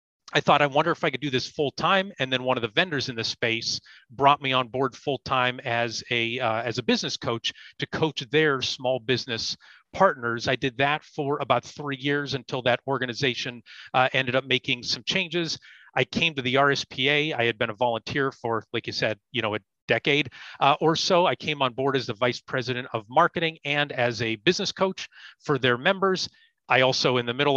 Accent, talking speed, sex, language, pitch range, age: American, 215 wpm, male, English, 120-145 Hz, 30-49